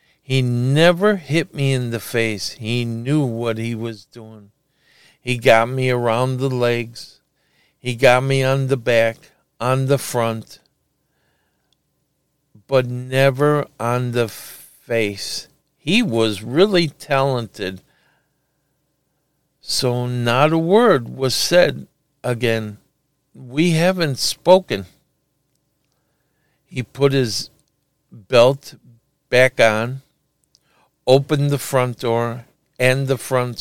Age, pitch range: 50-69, 120-145 Hz